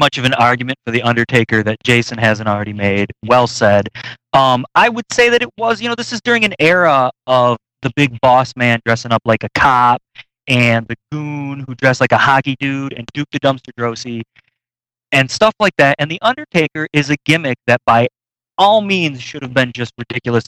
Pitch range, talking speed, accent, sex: 120-150 Hz, 210 wpm, American, male